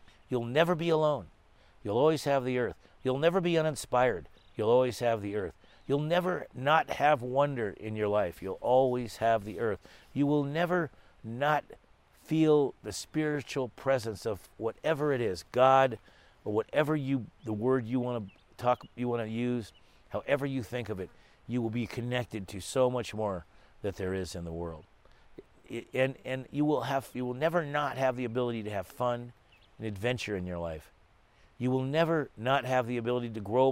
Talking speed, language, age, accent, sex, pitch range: 190 wpm, English, 50-69, American, male, 100-130 Hz